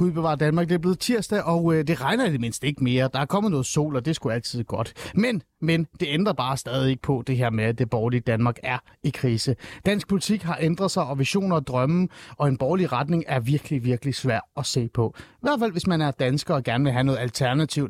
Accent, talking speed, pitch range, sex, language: native, 250 wpm, 130-180 Hz, male, Danish